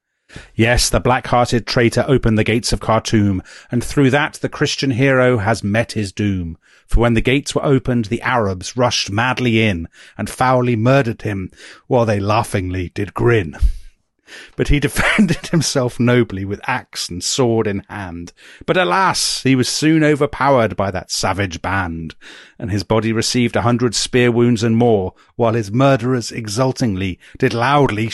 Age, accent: 40-59, British